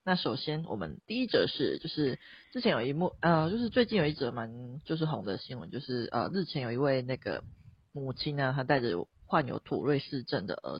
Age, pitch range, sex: 30-49, 125-155 Hz, female